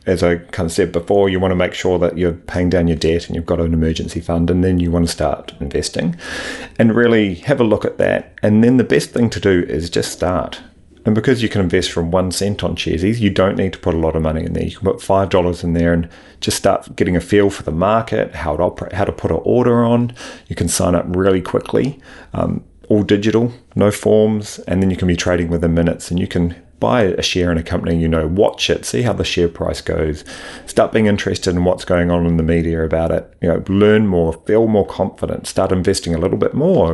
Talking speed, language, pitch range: 250 wpm, English, 85-100 Hz